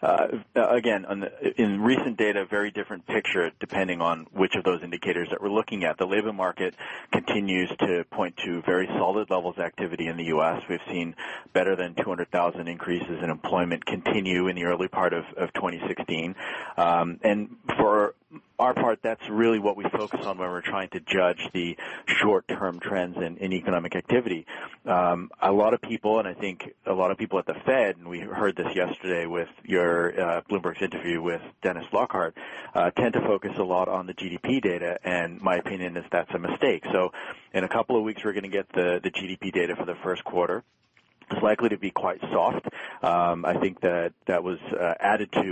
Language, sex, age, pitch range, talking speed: English, male, 40-59, 85-100 Hz, 200 wpm